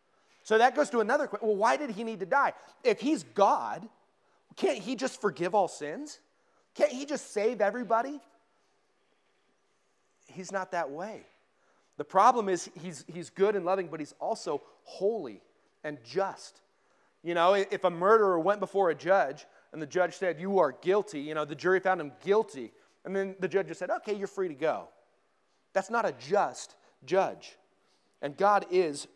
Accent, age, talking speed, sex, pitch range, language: American, 30-49, 180 wpm, male, 165-220 Hz, English